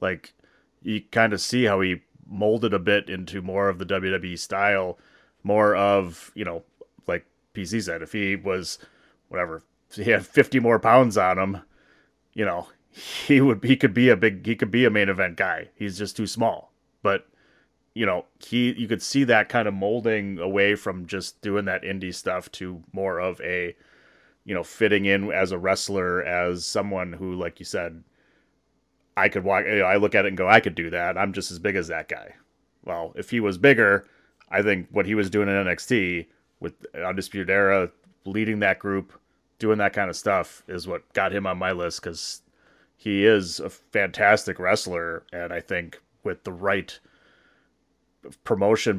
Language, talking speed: English, 190 wpm